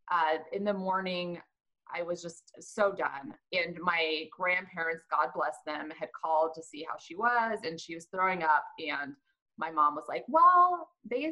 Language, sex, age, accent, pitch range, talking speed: English, female, 30-49, American, 185-300 Hz, 180 wpm